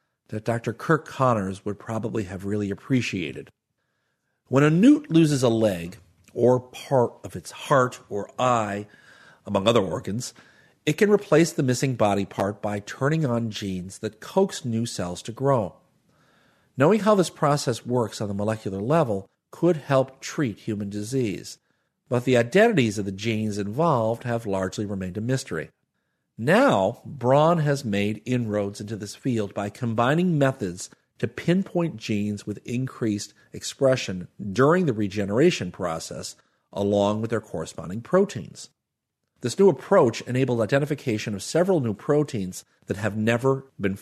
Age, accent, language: 50-69, American, English